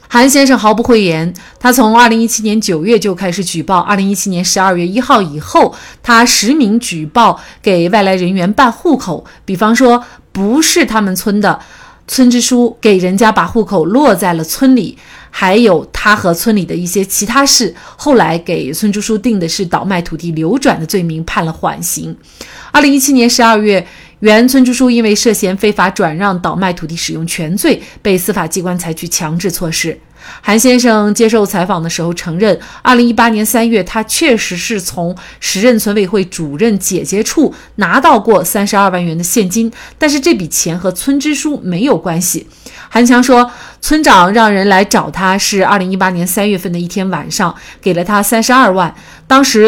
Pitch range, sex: 180-235 Hz, female